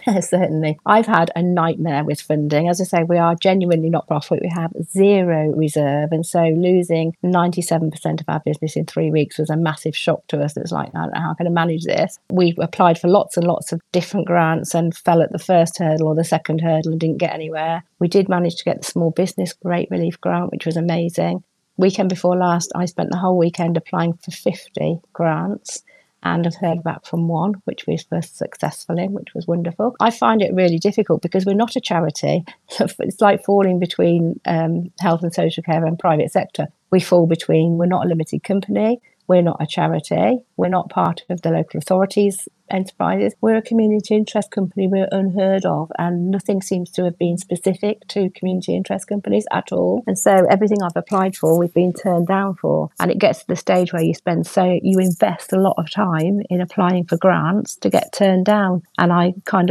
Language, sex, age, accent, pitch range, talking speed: English, female, 40-59, British, 165-190 Hz, 205 wpm